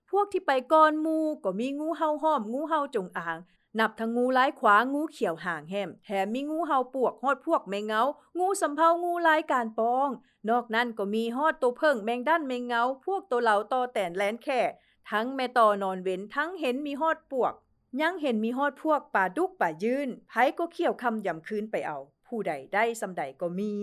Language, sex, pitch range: English, female, 205-295 Hz